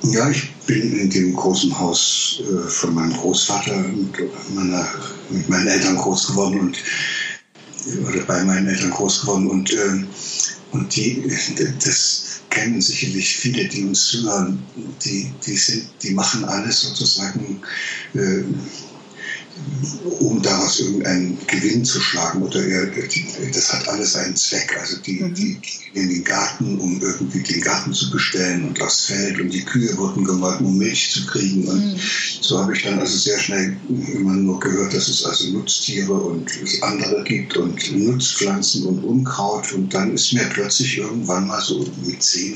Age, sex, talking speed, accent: 60-79, male, 155 wpm, German